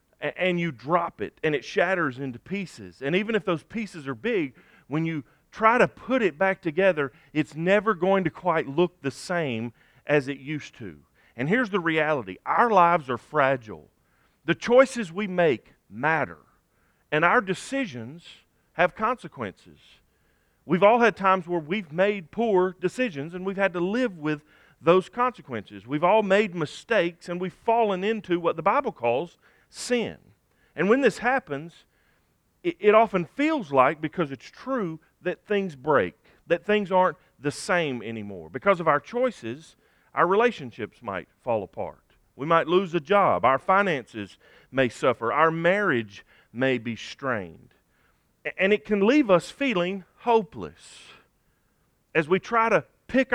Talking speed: 155 wpm